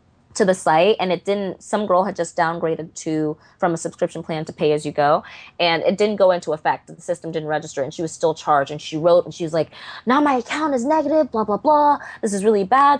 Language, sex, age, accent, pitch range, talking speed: English, female, 20-39, American, 160-215 Hz, 255 wpm